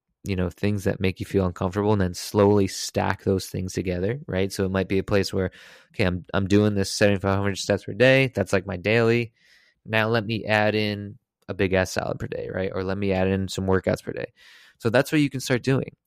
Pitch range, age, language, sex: 95-110 Hz, 20-39, English, male